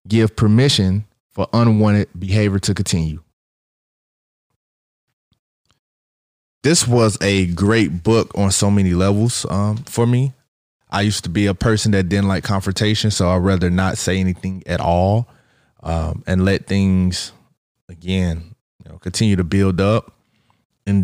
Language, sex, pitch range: English, male, 90-105 Hz